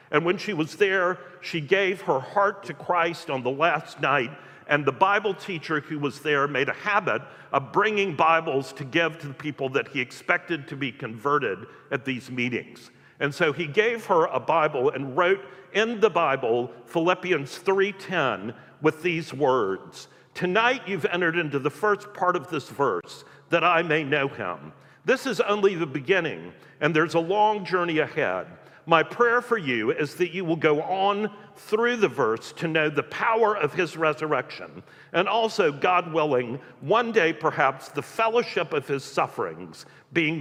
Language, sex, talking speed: English, male, 175 wpm